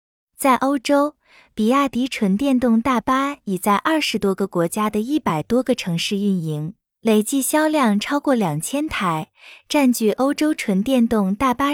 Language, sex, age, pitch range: Chinese, female, 20-39, 195-280 Hz